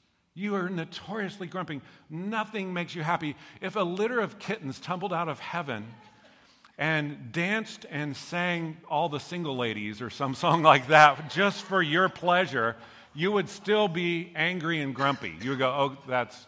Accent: American